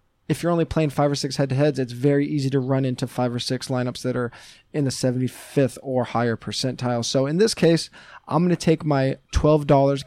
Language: English